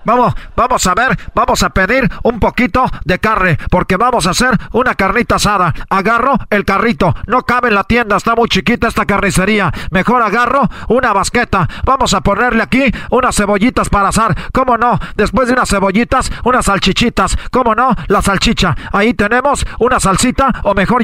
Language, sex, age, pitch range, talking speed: Spanish, male, 40-59, 195-245 Hz, 175 wpm